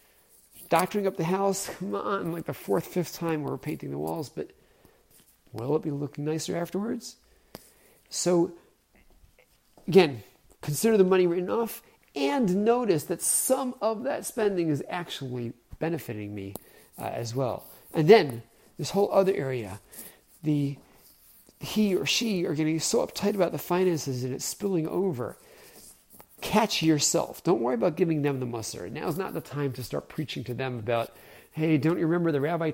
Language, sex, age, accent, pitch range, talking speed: English, male, 40-59, American, 140-185 Hz, 165 wpm